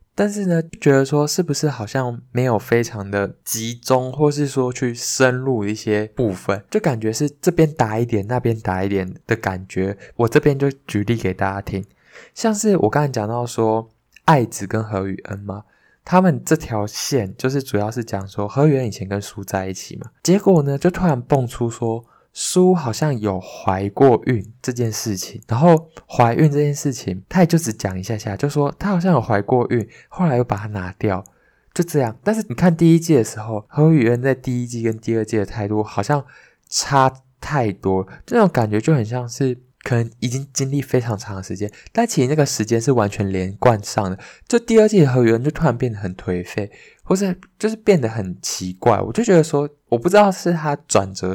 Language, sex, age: Chinese, male, 20-39